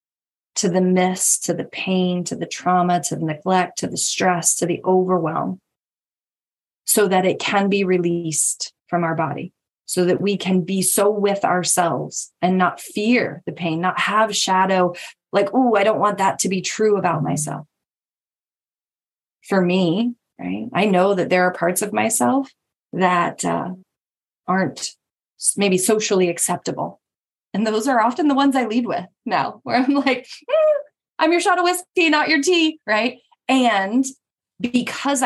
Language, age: English, 20-39